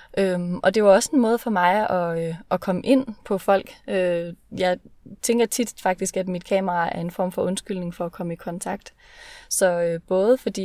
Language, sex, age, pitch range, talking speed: Danish, female, 20-39, 175-205 Hz, 215 wpm